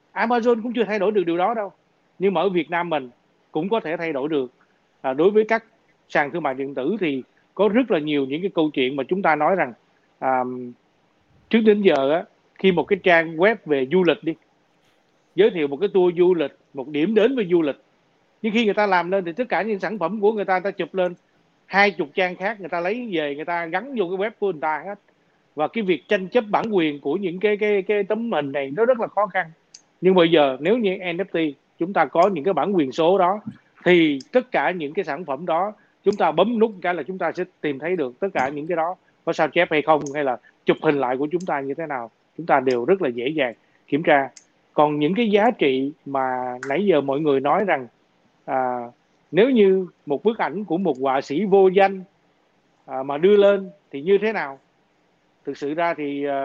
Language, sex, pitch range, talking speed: Vietnamese, male, 145-200 Hz, 240 wpm